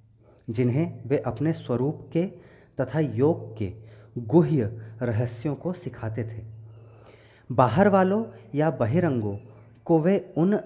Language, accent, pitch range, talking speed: Hindi, native, 110-160 Hz, 115 wpm